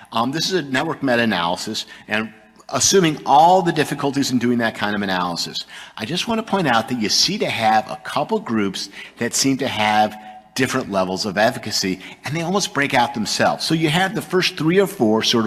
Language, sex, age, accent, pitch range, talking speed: English, male, 50-69, American, 110-145 Hz, 210 wpm